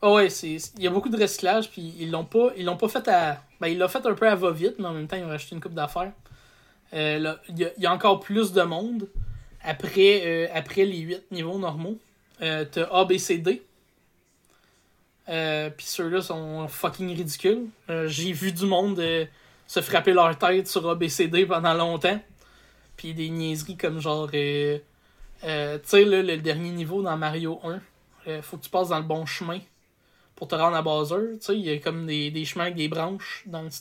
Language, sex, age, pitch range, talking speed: French, male, 20-39, 155-185 Hz, 205 wpm